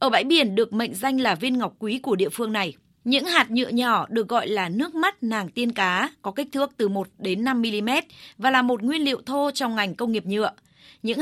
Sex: female